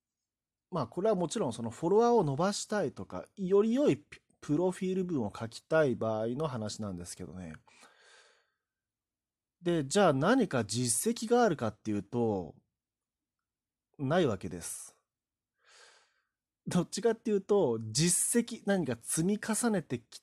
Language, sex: Japanese, male